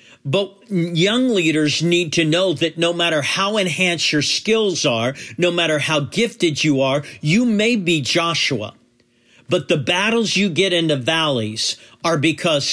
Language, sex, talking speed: English, male, 160 wpm